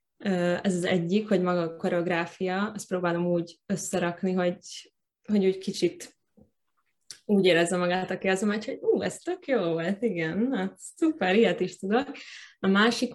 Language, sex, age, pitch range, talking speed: Hungarian, female, 20-39, 180-215 Hz, 170 wpm